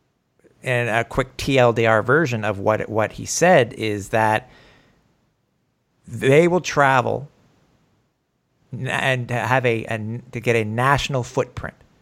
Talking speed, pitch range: 120 wpm, 115-140 Hz